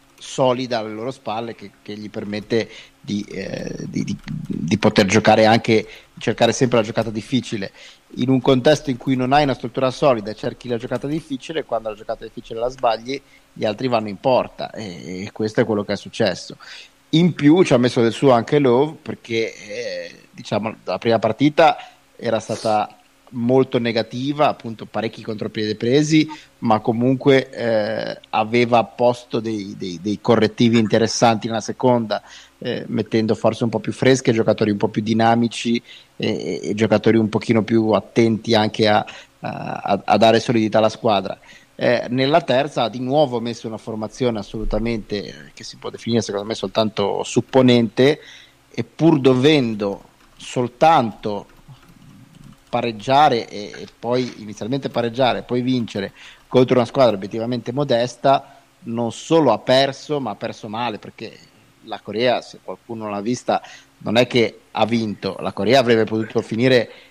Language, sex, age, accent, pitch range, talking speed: Italian, male, 30-49, native, 110-130 Hz, 155 wpm